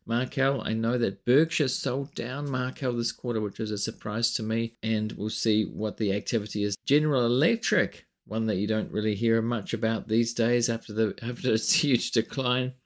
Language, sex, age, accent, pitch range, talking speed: English, male, 40-59, Australian, 110-145 Hz, 190 wpm